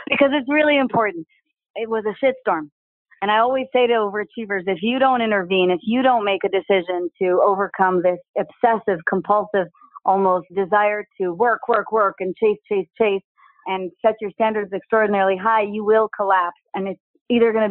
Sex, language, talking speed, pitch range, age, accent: female, English, 185 wpm, 190-240 Hz, 40-59, American